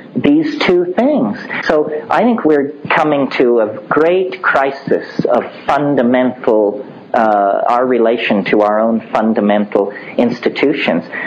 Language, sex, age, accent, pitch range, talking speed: English, male, 50-69, American, 145-240 Hz, 115 wpm